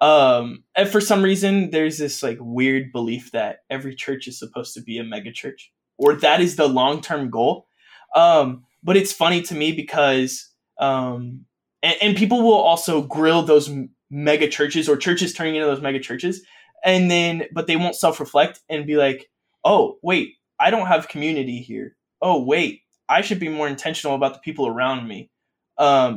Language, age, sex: English, 20-39, male